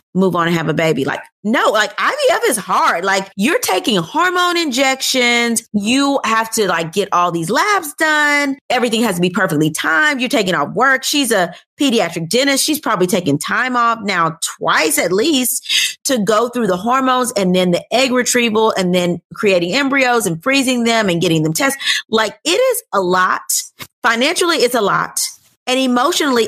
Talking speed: 185 wpm